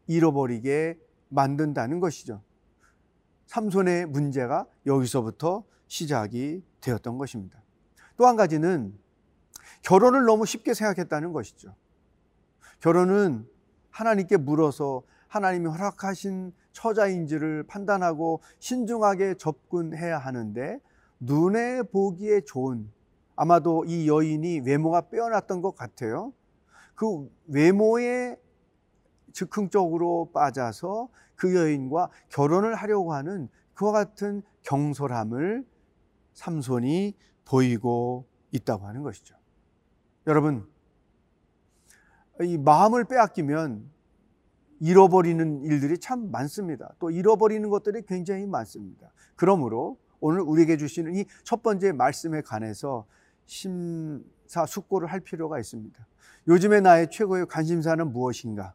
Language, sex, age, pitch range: Korean, male, 40-59, 130-195 Hz